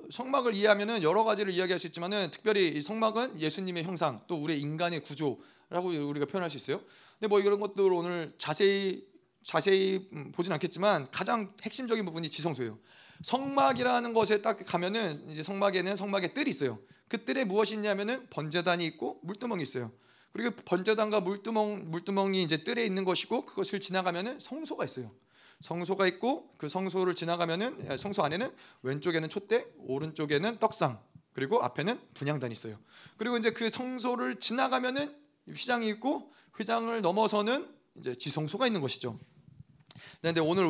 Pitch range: 165-225 Hz